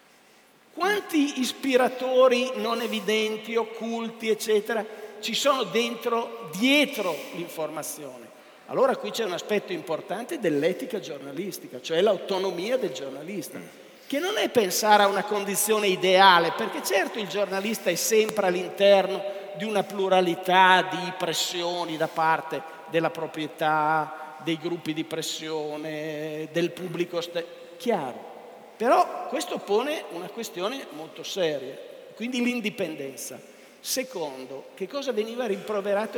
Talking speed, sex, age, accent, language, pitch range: 115 wpm, male, 50-69, native, Italian, 180-260 Hz